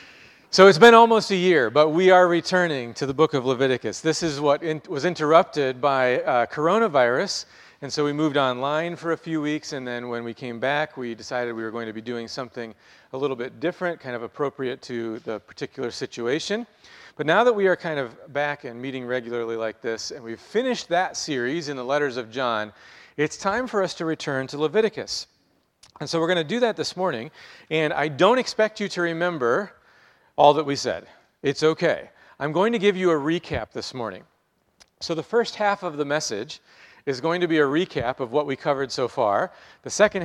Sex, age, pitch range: male, 40-59, 125-165 Hz